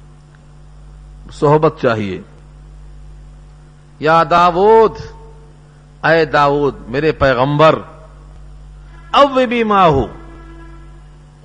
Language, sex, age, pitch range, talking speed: Urdu, male, 50-69, 150-210 Hz, 60 wpm